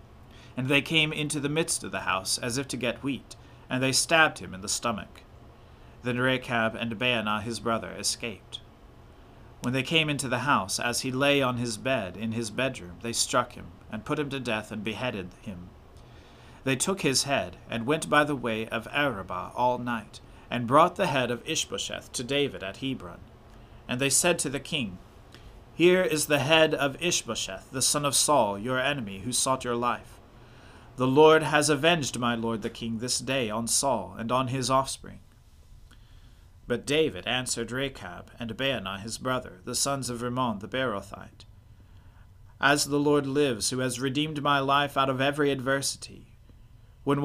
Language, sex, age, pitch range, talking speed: English, male, 40-59, 110-140 Hz, 180 wpm